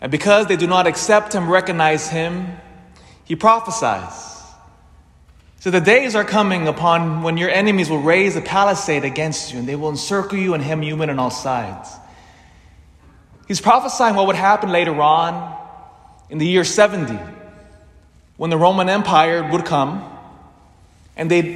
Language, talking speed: English, 160 wpm